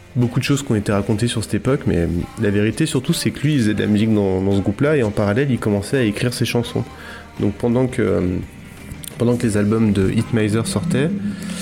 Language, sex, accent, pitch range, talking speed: French, male, French, 100-120 Hz, 240 wpm